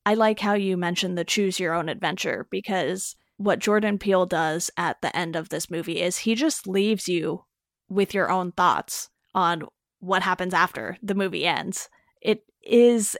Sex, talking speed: female, 165 wpm